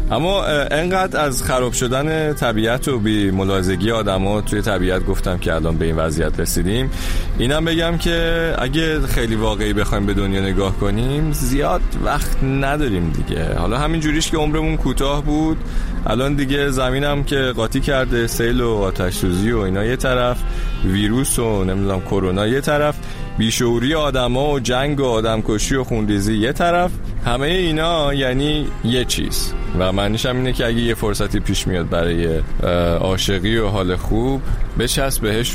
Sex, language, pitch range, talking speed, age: male, Persian, 95-135 Hz, 155 wpm, 30-49